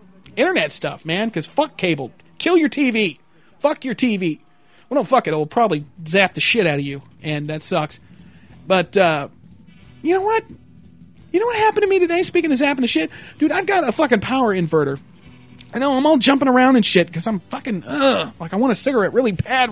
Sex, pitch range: male, 165-245 Hz